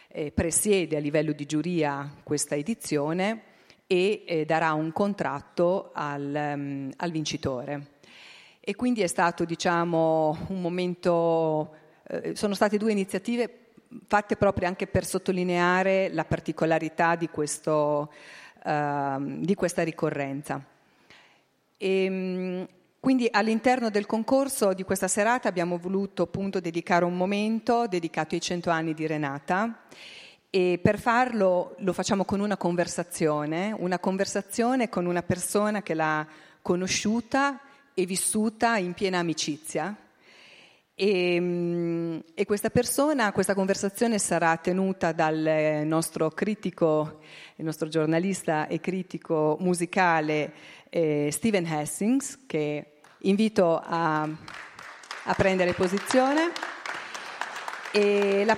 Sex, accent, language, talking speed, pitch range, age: female, native, Italian, 115 wpm, 160-205 Hz, 40-59